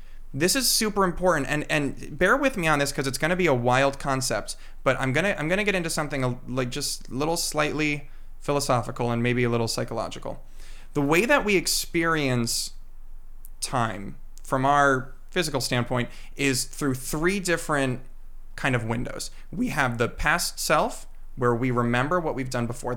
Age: 30-49